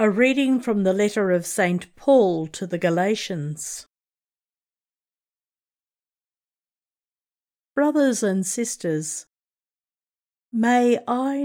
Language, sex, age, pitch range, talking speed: English, female, 50-69, 180-235 Hz, 85 wpm